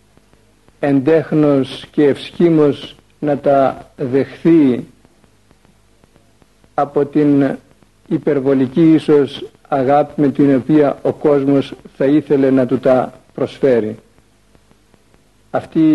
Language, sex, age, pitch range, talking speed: Greek, male, 60-79, 130-150 Hz, 85 wpm